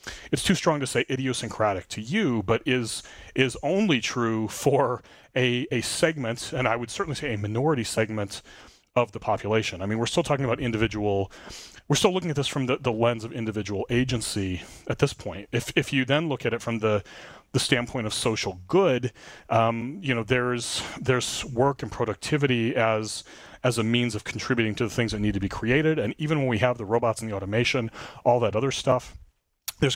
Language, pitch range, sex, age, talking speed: English, 105-130 Hz, male, 30-49, 200 wpm